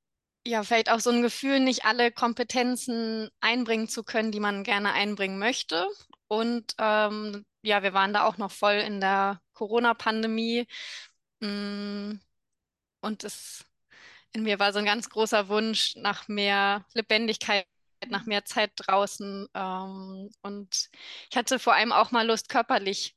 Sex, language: female, German